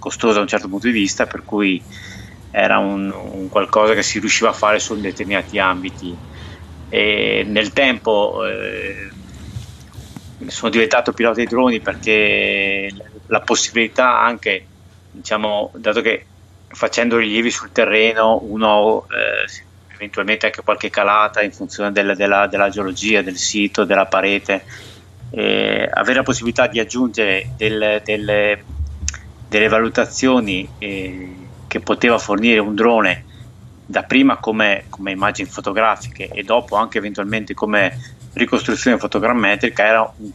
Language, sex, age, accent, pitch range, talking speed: Italian, male, 30-49, native, 95-115 Hz, 130 wpm